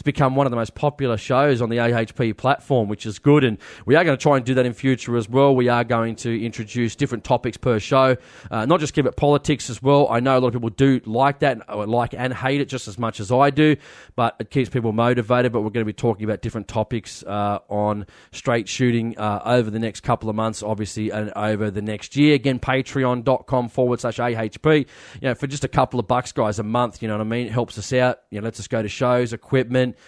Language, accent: English, Australian